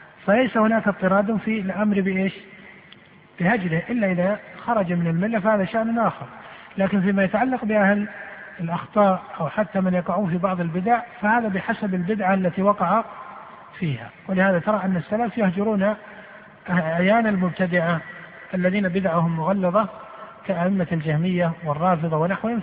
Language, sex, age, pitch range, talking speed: Arabic, male, 50-69, 175-215 Hz, 125 wpm